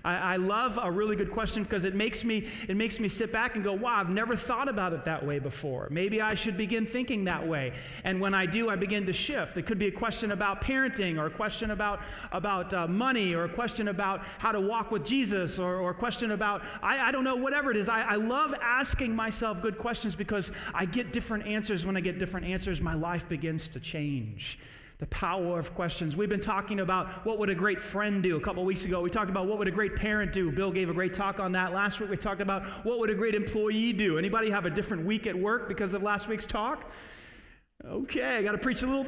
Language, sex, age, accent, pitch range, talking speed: English, male, 30-49, American, 180-220 Hz, 245 wpm